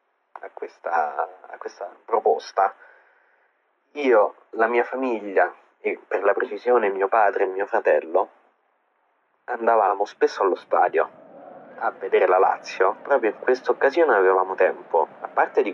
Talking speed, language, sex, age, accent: 130 wpm, Italian, male, 30-49, native